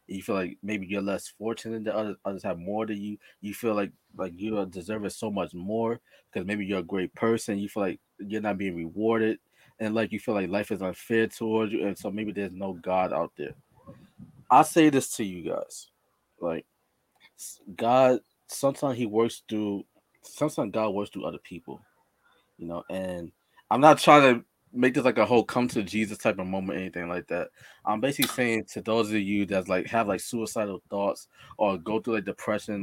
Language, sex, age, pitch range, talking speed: English, male, 20-39, 100-120 Hz, 205 wpm